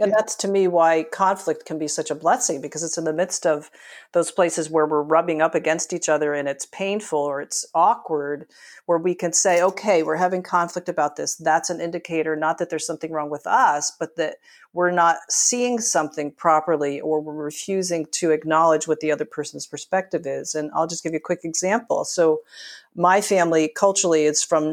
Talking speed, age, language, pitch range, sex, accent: 205 wpm, 40-59, English, 155-180 Hz, female, American